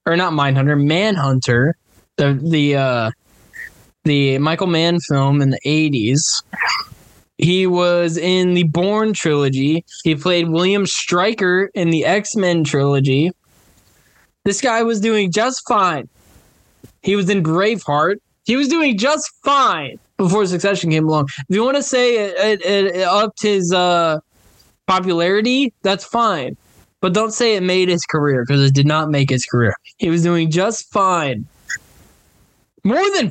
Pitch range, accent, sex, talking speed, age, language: 155-220 Hz, American, male, 150 wpm, 10-29, English